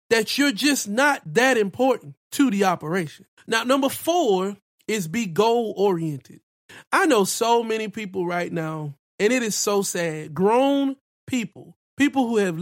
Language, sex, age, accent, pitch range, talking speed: English, male, 30-49, American, 185-255 Hz, 150 wpm